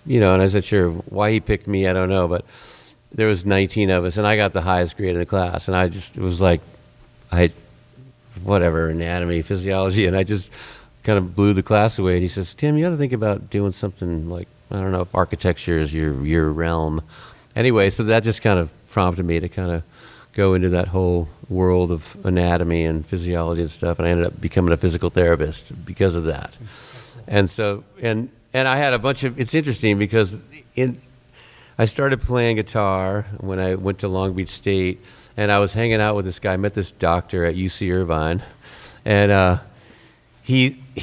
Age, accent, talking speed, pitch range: 50-69, American, 210 wpm, 90-110 Hz